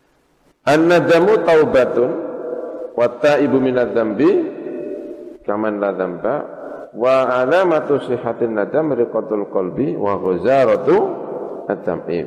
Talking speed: 100 wpm